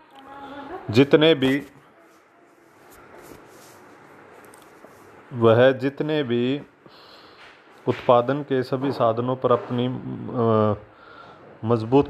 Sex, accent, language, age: male, native, Hindi, 30-49